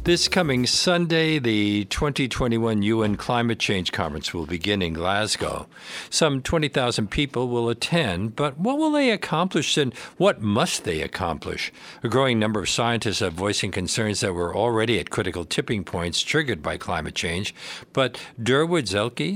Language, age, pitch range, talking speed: English, 50-69, 90-120 Hz, 155 wpm